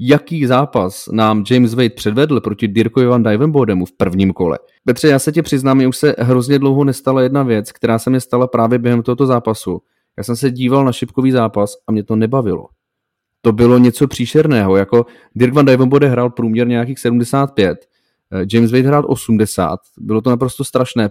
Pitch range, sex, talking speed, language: 115-135 Hz, male, 185 wpm, Czech